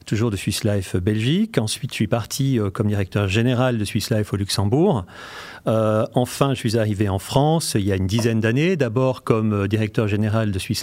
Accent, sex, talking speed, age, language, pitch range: French, male, 210 wpm, 40-59, French, 105-130 Hz